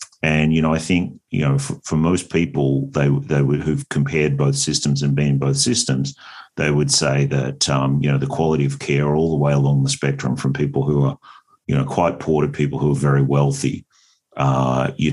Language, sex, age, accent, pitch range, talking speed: English, male, 40-59, Australian, 70-75 Hz, 220 wpm